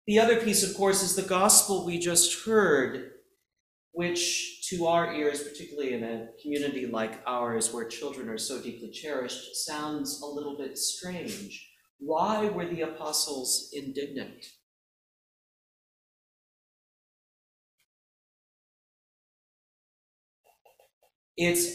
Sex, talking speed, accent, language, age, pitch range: male, 105 wpm, American, English, 40-59, 125-175 Hz